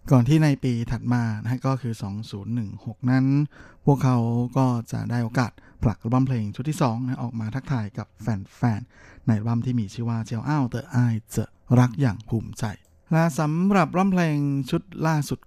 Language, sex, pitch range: Thai, male, 115-135 Hz